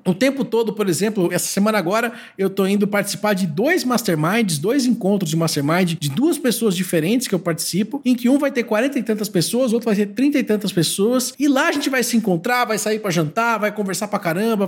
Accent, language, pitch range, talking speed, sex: Brazilian, Portuguese, 185-265 Hz, 235 wpm, male